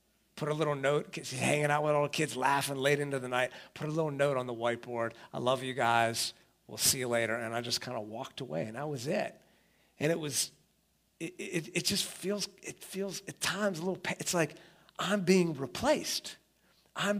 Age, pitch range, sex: 40-59, 120-190 Hz, male